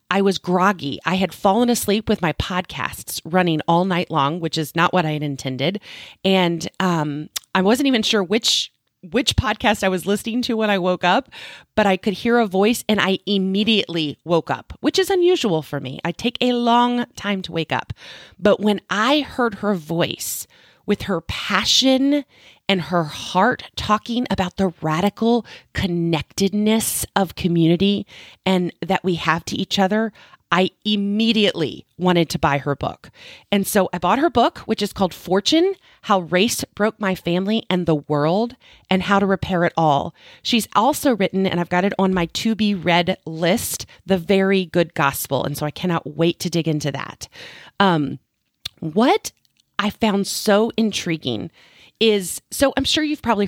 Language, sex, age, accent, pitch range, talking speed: English, female, 30-49, American, 170-220 Hz, 175 wpm